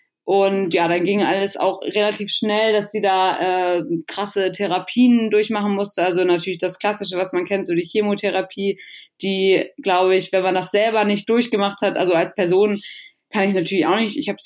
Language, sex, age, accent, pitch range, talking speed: German, female, 20-39, German, 185-210 Hz, 195 wpm